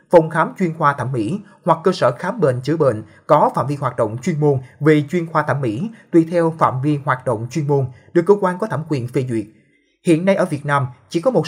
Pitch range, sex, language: 135-175 Hz, male, Vietnamese